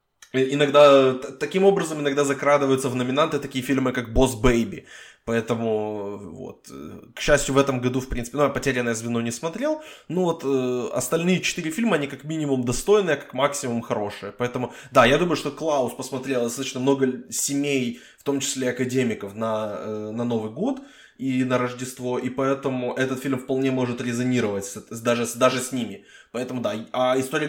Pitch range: 120-145 Hz